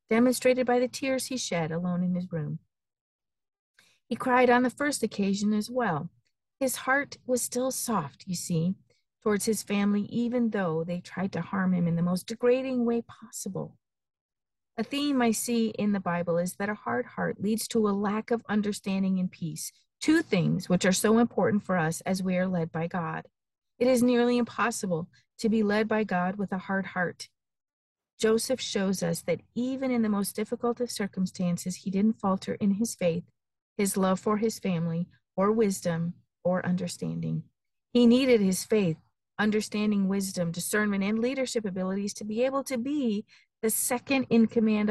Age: 50-69